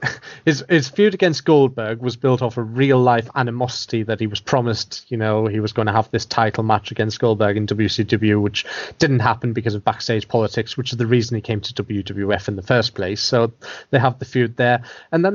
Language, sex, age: English, male, 30-49